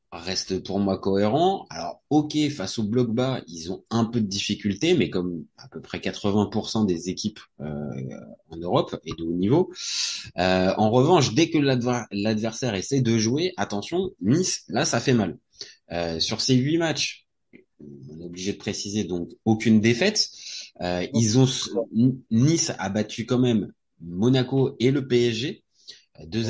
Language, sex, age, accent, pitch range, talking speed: French, male, 20-39, French, 100-130 Hz, 160 wpm